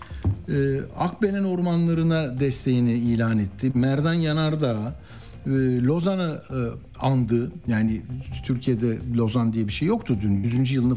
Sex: male